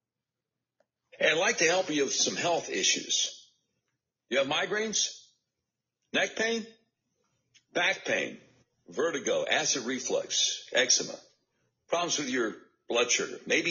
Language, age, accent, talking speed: English, 60-79, American, 120 wpm